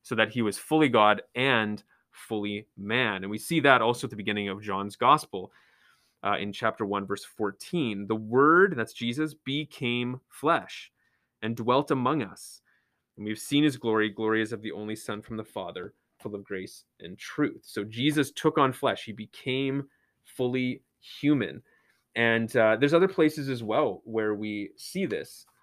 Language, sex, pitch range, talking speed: English, male, 110-135 Hz, 175 wpm